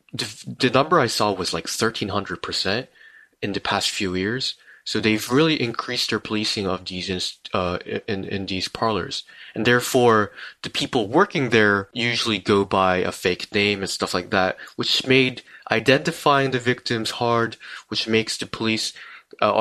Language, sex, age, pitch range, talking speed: English, male, 20-39, 100-130 Hz, 160 wpm